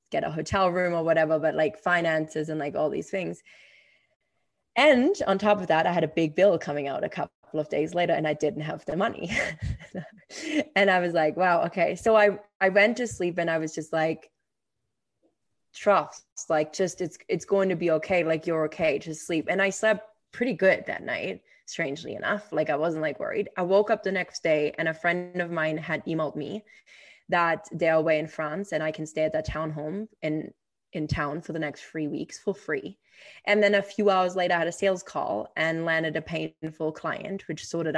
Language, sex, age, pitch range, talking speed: English, female, 20-39, 160-205 Hz, 220 wpm